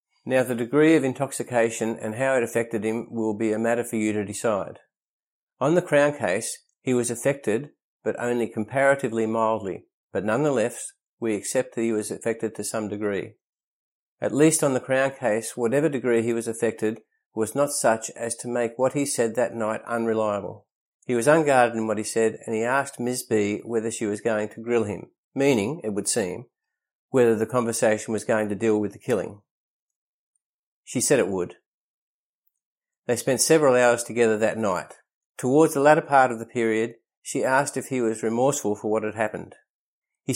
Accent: Australian